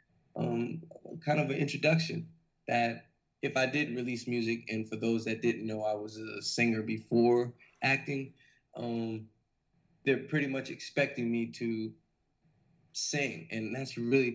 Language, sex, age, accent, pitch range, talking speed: English, male, 20-39, American, 115-135 Hz, 140 wpm